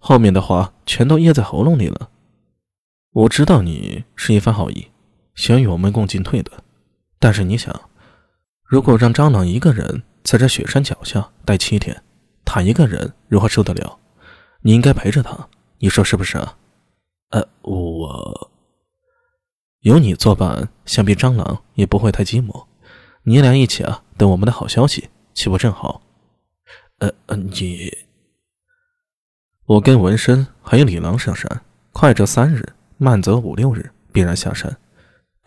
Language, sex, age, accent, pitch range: Chinese, male, 20-39, native, 95-125 Hz